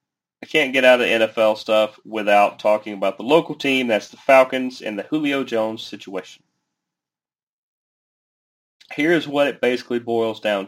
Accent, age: American, 30-49